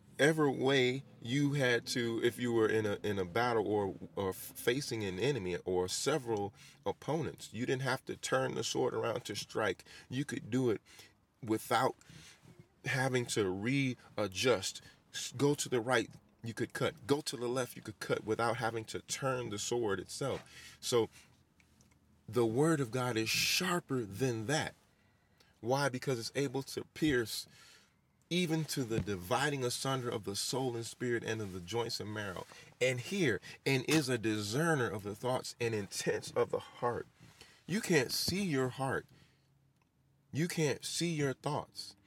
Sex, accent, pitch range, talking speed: male, American, 110-140 Hz, 165 wpm